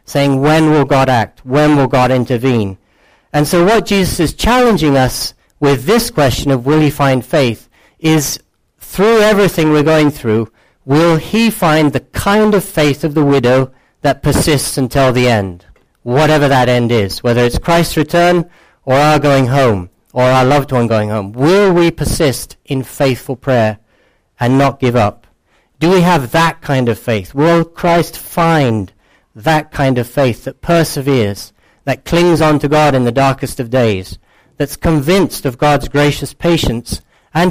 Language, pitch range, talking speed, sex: English, 115-155 Hz, 170 wpm, male